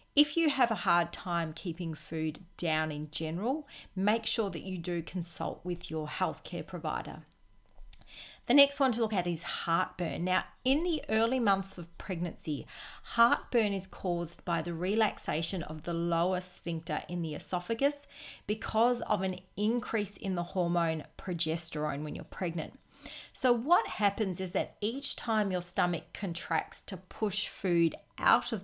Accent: Australian